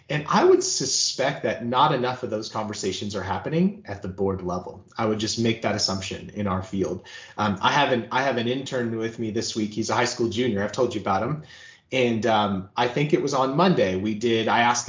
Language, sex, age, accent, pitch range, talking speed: English, male, 30-49, American, 110-170 Hz, 240 wpm